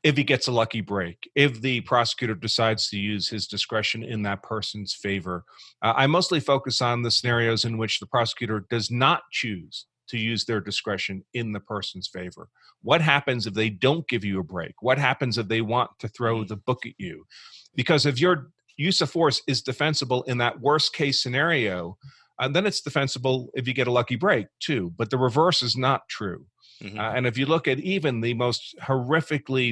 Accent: American